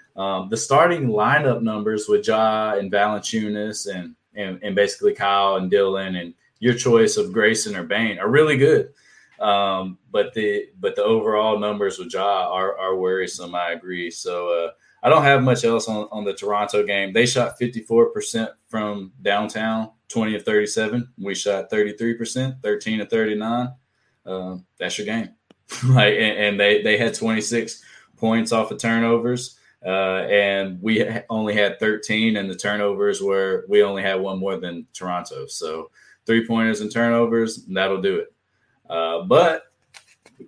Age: 20-39